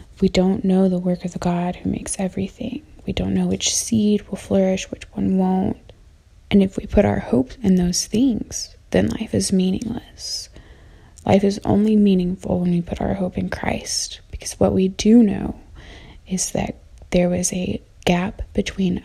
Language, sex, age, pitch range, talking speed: English, female, 20-39, 175-200 Hz, 180 wpm